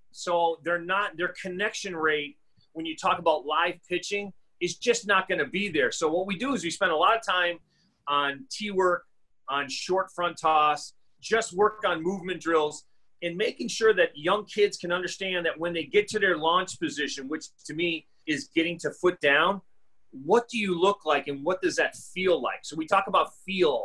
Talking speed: 205 wpm